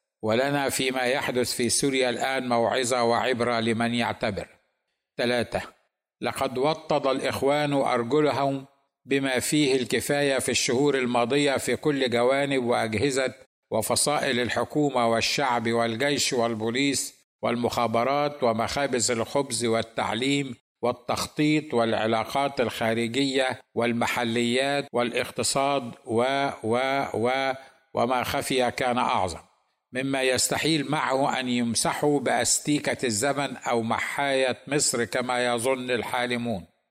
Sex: male